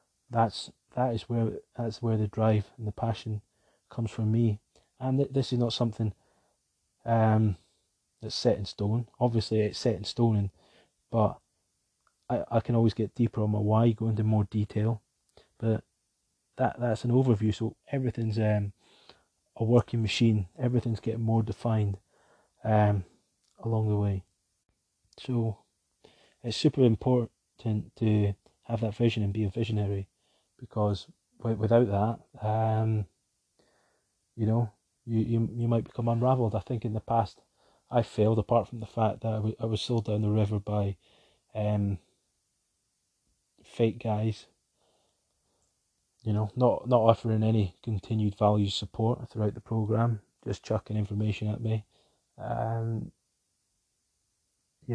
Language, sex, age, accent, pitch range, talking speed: English, male, 20-39, British, 105-115 Hz, 145 wpm